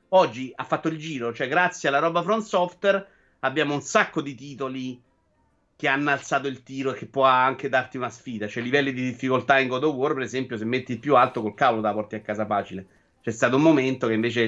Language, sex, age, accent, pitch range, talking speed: Italian, male, 30-49, native, 115-155 Hz, 230 wpm